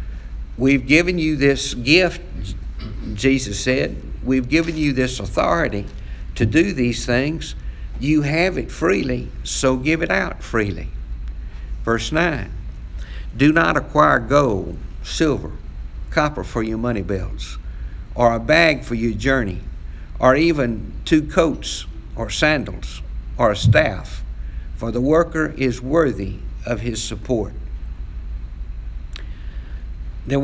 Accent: American